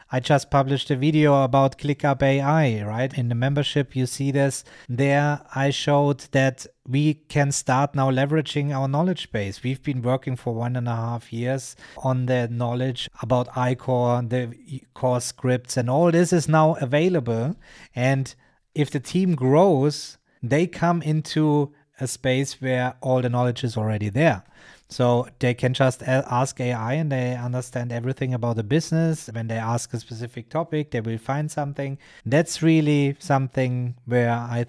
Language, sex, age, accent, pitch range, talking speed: English, male, 30-49, German, 120-150 Hz, 165 wpm